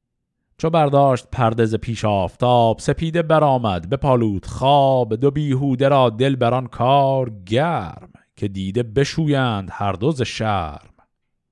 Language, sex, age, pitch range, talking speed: Persian, male, 50-69, 110-140 Hz, 120 wpm